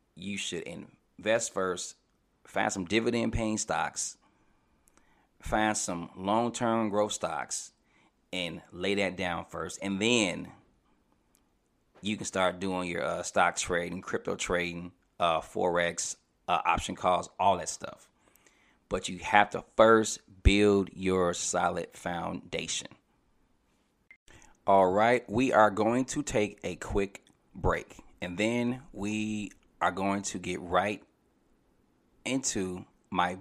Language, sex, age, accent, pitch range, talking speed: English, male, 30-49, American, 95-110 Hz, 120 wpm